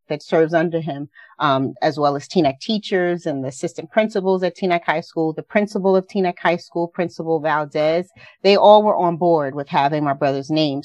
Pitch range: 150-180 Hz